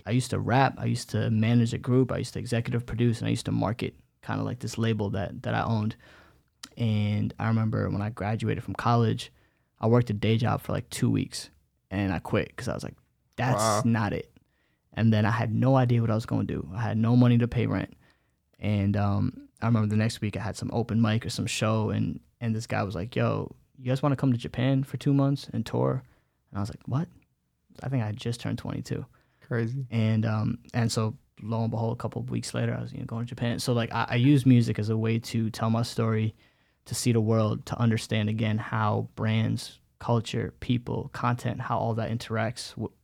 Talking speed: 235 wpm